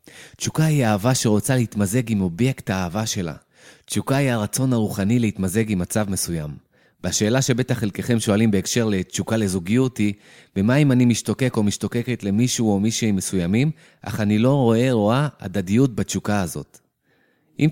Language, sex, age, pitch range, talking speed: Hebrew, male, 30-49, 100-130 Hz, 150 wpm